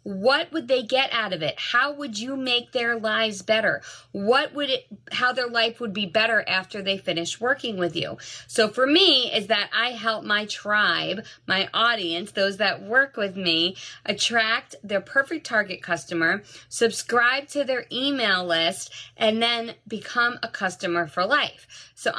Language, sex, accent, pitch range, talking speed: English, female, American, 185-250 Hz, 170 wpm